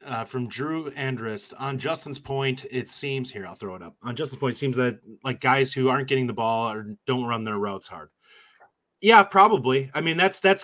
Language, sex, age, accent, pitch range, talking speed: English, male, 30-49, American, 115-140 Hz, 220 wpm